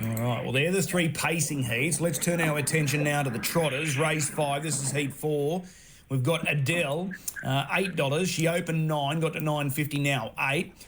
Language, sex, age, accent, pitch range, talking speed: English, male, 30-49, Australian, 140-175 Hz, 200 wpm